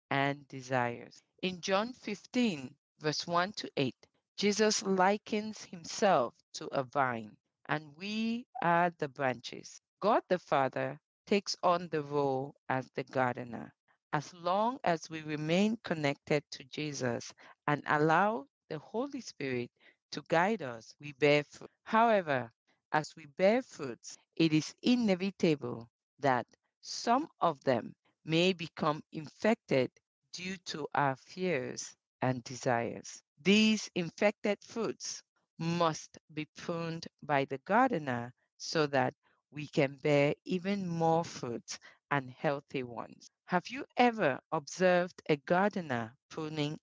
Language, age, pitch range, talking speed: English, 50-69, 145-195 Hz, 125 wpm